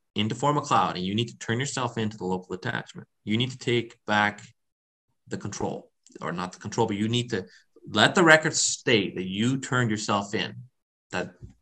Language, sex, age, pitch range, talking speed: English, male, 30-49, 95-120 Hz, 200 wpm